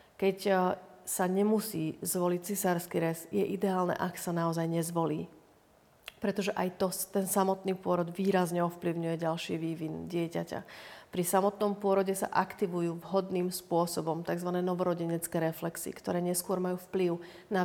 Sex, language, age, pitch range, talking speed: female, Slovak, 40-59, 175-195 Hz, 130 wpm